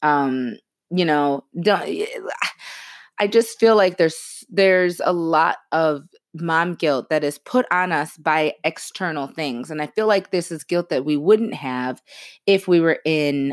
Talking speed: 165 wpm